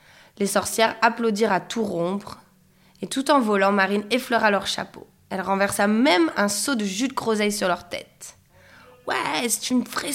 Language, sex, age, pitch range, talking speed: French, female, 20-39, 190-285 Hz, 185 wpm